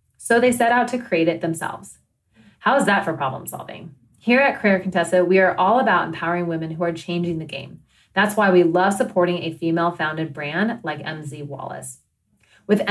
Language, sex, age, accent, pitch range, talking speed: English, female, 30-49, American, 160-200 Hz, 190 wpm